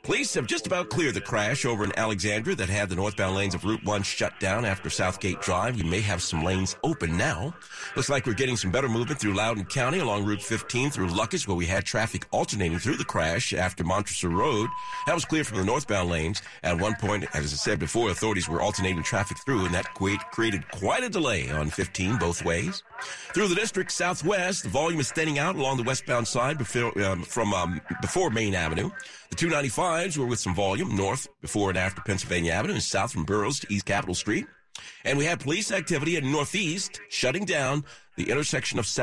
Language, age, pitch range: English, 50-69, 95-145 Hz